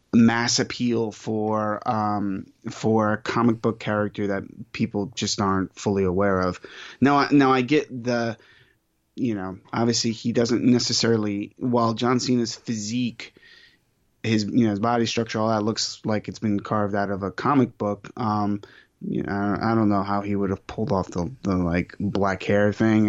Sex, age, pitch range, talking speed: male, 20-39, 100-120 Hz, 175 wpm